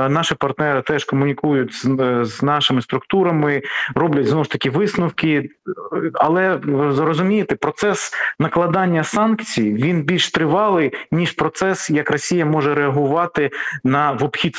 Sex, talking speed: male, 125 wpm